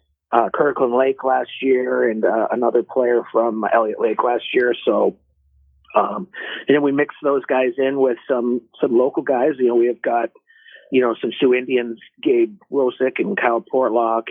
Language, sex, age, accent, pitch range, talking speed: English, male, 40-59, American, 115-135 Hz, 180 wpm